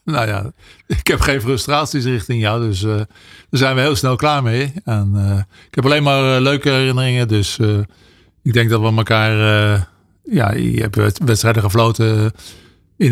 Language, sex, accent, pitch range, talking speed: Dutch, male, Dutch, 105-125 Hz, 180 wpm